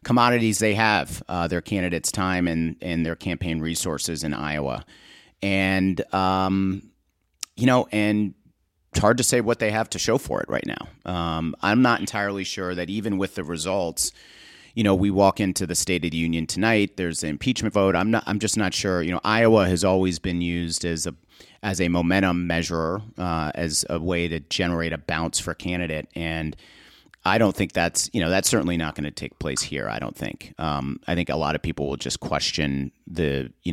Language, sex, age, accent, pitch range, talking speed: English, male, 40-59, American, 80-100 Hz, 210 wpm